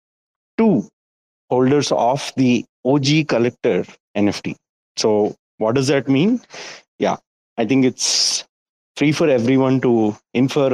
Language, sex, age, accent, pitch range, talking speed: English, male, 30-49, Indian, 110-140 Hz, 115 wpm